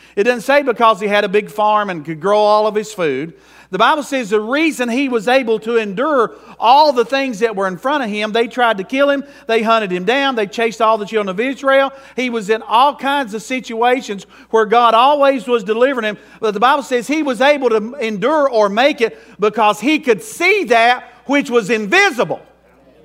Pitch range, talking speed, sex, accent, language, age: 225-285 Hz, 220 wpm, male, American, English, 50-69